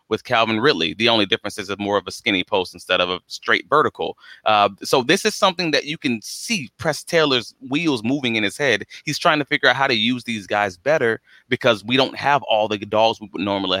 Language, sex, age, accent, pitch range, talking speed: English, male, 30-49, American, 105-135 Hz, 240 wpm